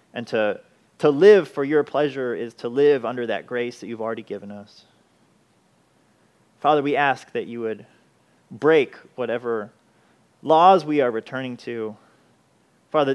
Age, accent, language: 30-49, American, English